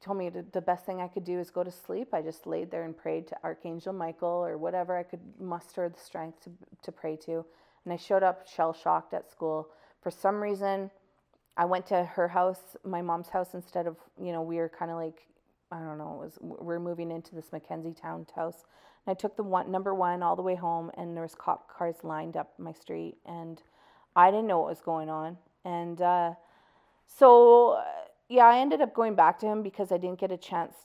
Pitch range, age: 160-185 Hz, 30-49